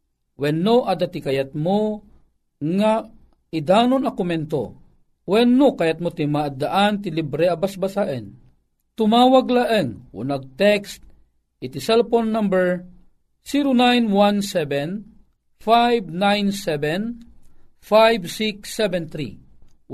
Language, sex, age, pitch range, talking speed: Filipino, male, 50-69, 150-215 Hz, 65 wpm